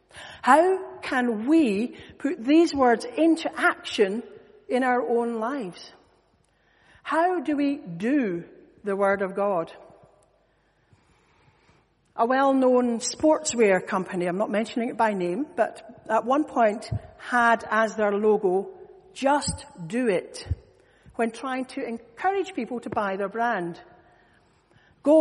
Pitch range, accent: 225-315 Hz, British